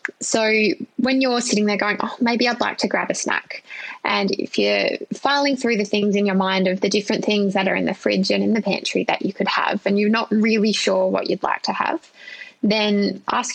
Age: 20-39